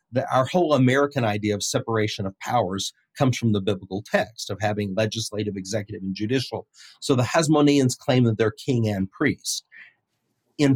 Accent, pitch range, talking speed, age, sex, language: American, 110-135 Hz, 165 wpm, 40-59, male, English